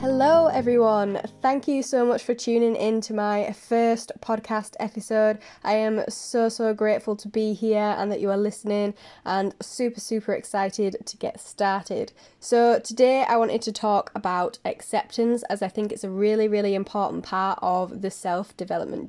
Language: English